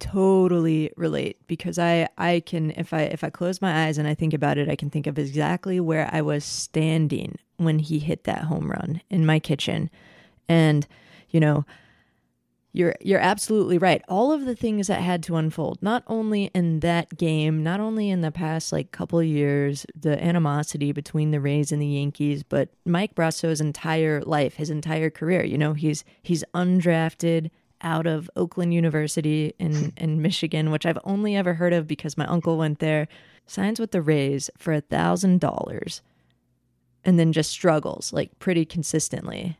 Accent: American